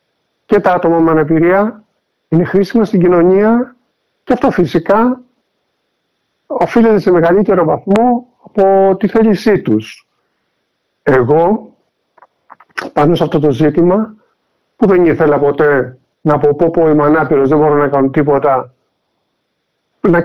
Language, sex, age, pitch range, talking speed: Greek, male, 50-69, 155-200 Hz, 125 wpm